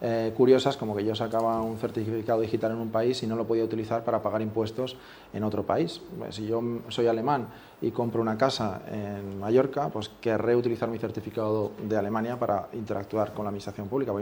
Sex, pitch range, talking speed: male, 105-125 Hz, 200 wpm